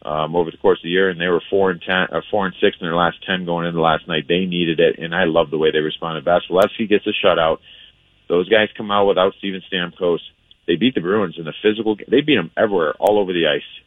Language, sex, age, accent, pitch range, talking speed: English, male, 40-59, American, 80-100 Hz, 265 wpm